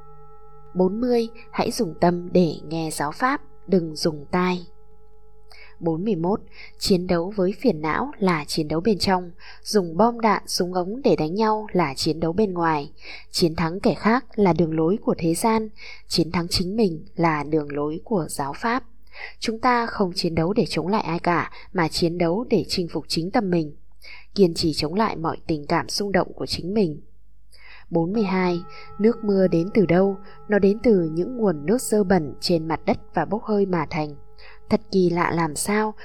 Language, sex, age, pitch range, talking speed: Vietnamese, female, 20-39, 160-215 Hz, 190 wpm